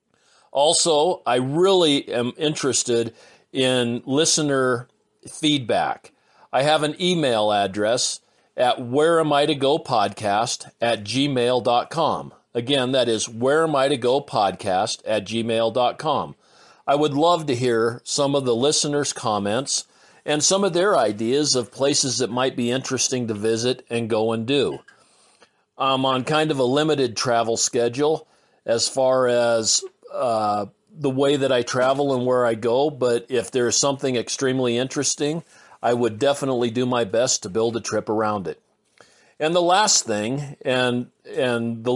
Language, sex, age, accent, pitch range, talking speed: English, male, 40-59, American, 120-145 Hz, 140 wpm